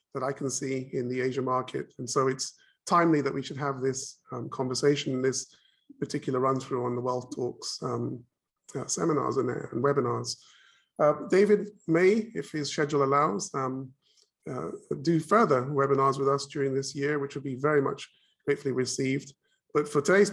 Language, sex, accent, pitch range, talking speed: English, male, British, 130-150 Hz, 175 wpm